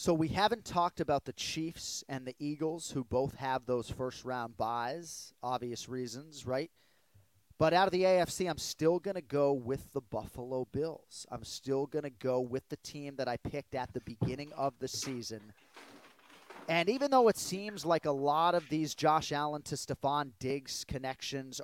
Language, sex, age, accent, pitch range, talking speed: English, male, 30-49, American, 125-160 Hz, 185 wpm